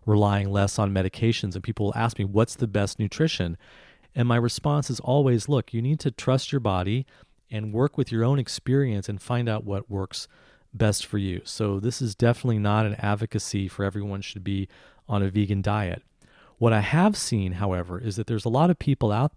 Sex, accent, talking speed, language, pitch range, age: male, American, 210 wpm, English, 100-125 Hz, 40-59